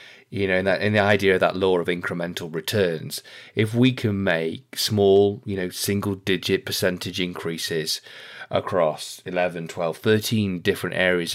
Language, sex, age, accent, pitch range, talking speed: English, male, 30-49, British, 85-100 Hz, 160 wpm